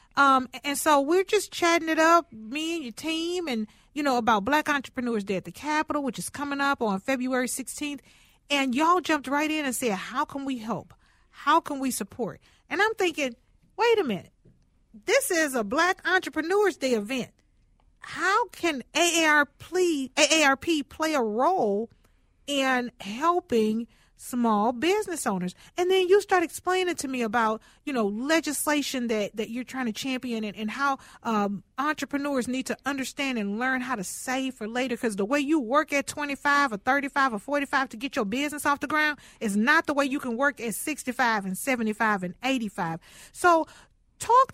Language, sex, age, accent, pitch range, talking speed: English, female, 40-59, American, 235-305 Hz, 180 wpm